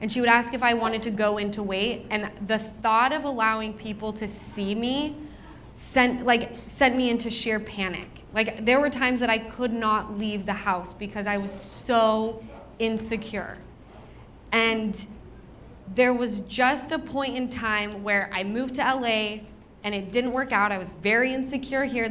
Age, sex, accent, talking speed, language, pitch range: 20-39, female, American, 180 wpm, English, 205-240 Hz